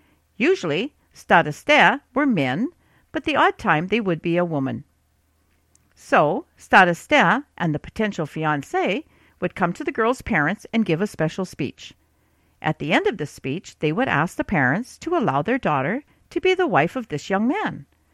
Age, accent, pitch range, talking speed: 50-69, American, 145-220 Hz, 175 wpm